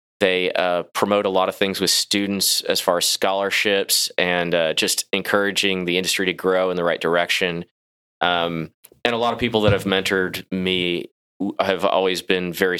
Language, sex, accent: English, male, American